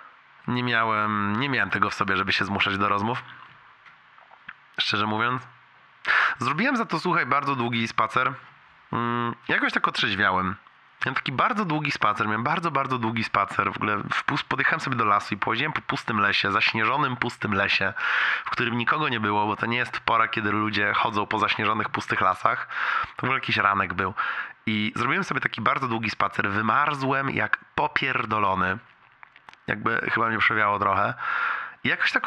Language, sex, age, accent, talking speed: Polish, male, 20-39, native, 165 wpm